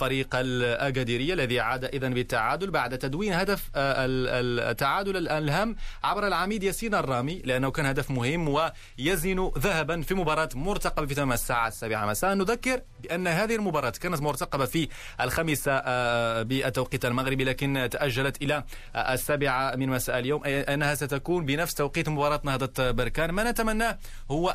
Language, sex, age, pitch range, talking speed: Arabic, male, 30-49, 130-160 Hz, 135 wpm